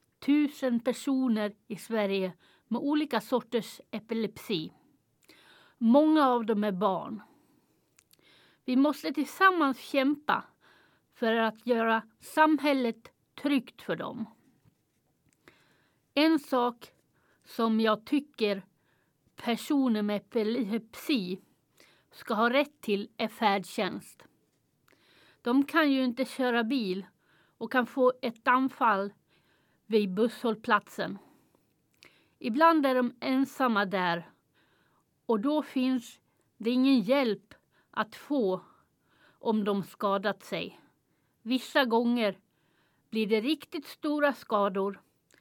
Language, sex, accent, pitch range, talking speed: Swedish, female, native, 220-275 Hz, 100 wpm